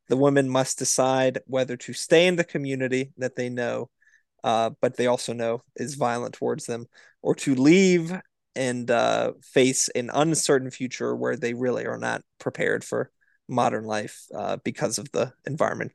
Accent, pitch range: American, 120-140 Hz